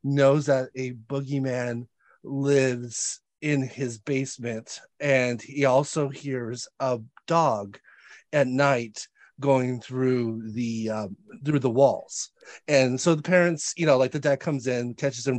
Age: 30-49